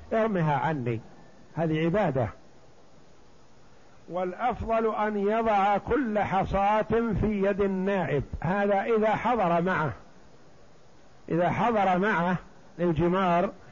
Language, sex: Arabic, male